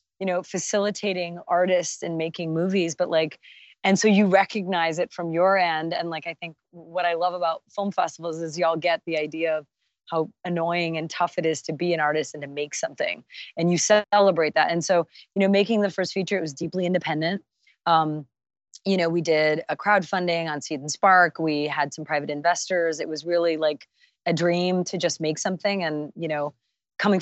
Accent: American